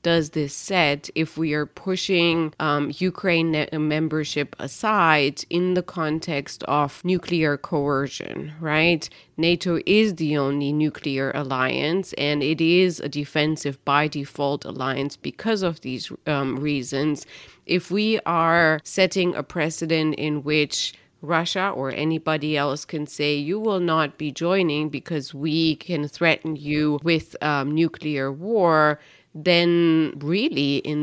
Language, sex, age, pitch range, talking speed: English, female, 30-49, 145-170 Hz, 130 wpm